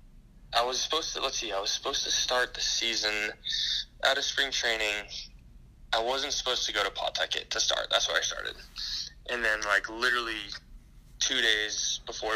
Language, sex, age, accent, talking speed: English, male, 10-29, American, 180 wpm